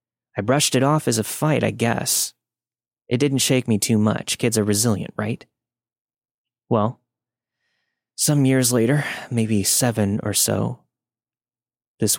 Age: 20-39